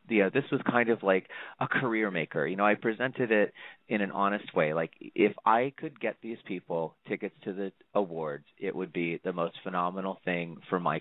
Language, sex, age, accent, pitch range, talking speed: English, male, 30-49, American, 90-115 Hz, 200 wpm